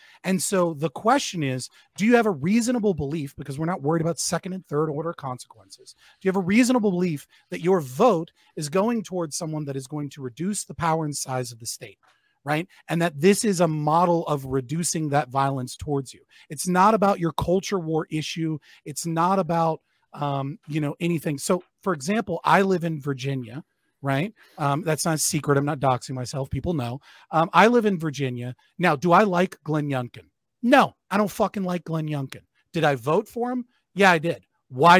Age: 30-49